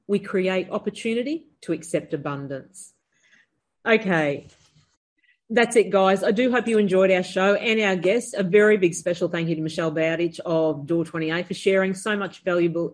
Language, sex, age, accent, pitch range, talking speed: English, female, 40-59, Australian, 170-220 Hz, 165 wpm